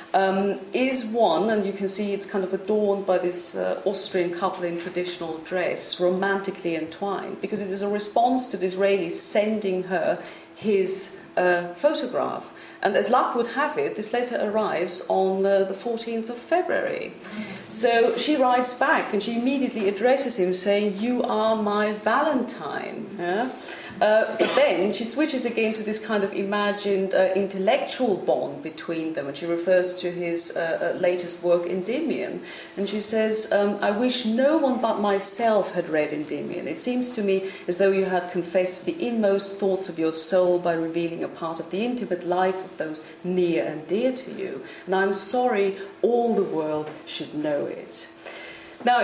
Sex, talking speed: female, 175 wpm